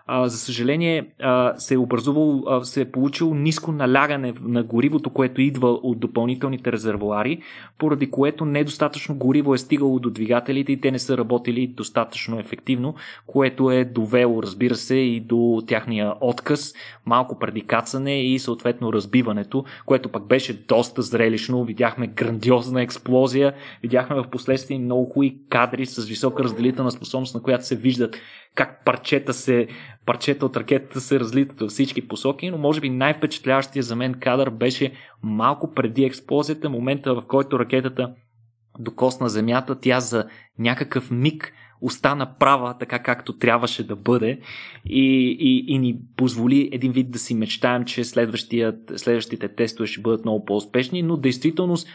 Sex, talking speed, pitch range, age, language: male, 145 wpm, 120-140 Hz, 20-39, Bulgarian